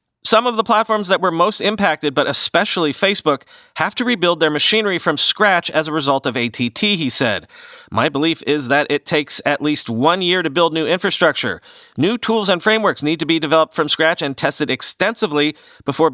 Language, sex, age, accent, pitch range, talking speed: English, male, 40-59, American, 120-170 Hz, 195 wpm